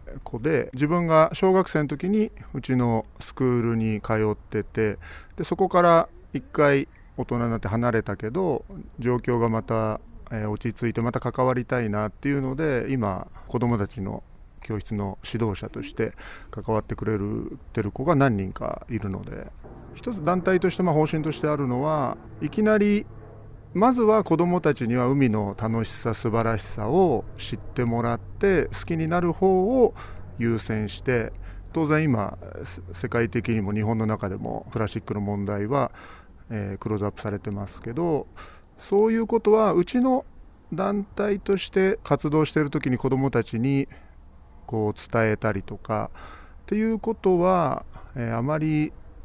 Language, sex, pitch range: Japanese, male, 110-155 Hz